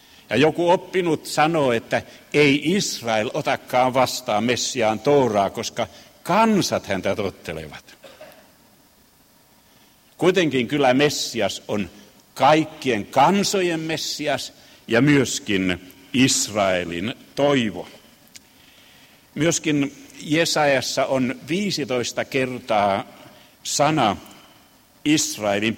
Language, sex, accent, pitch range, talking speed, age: Finnish, male, native, 115-160 Hz, 75 wpm, 60-79